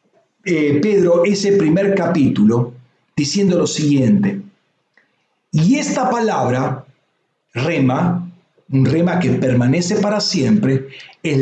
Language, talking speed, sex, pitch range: Spanish, 100 wpm, male, 155-210 Hz